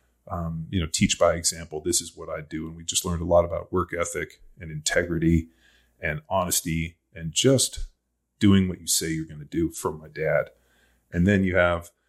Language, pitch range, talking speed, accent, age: English, 80-95 Hz, 200 wpm, American, 30-49